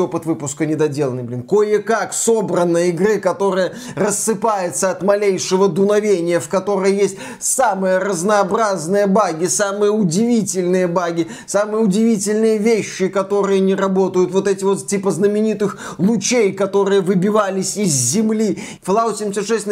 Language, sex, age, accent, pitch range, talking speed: Russian, male, 20-39, native, 190-230 Hz, 120 wpm